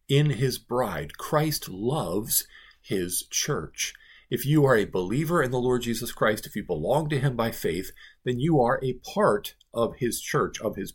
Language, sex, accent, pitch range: English, male, American, 110-145 Hz